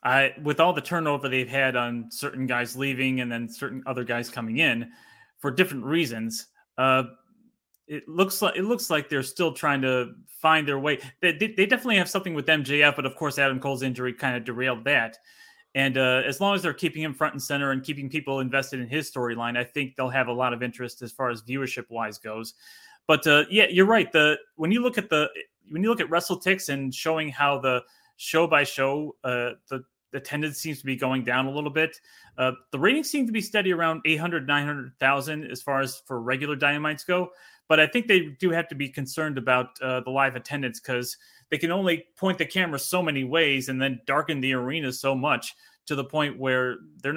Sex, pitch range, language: male, 130-160 Hz, English